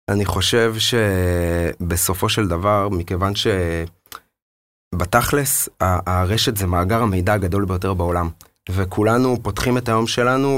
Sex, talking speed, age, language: male, 110 wpm, 30-49, Hebrew